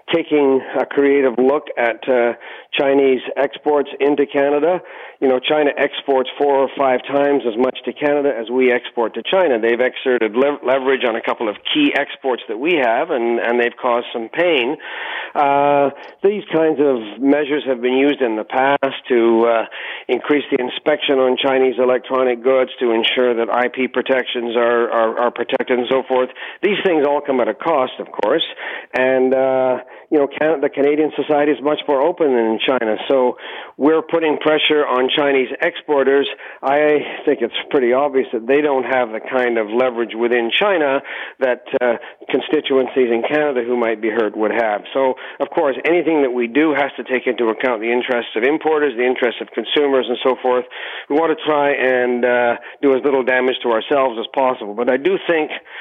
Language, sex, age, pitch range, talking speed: English, male, 50-69, 125-145 Hz, 185 wpm